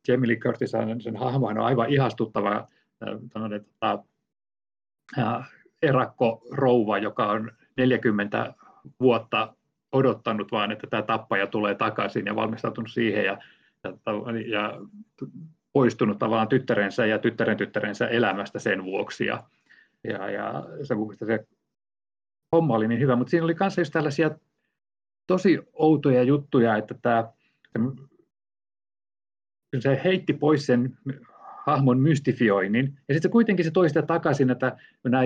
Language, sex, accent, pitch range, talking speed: Finnish, male, native, 115-150 Hz, 120 wpm